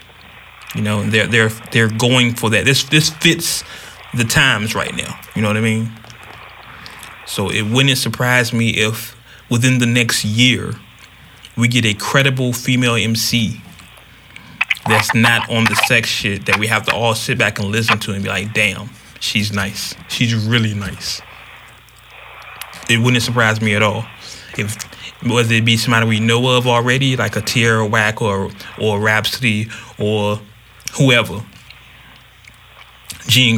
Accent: American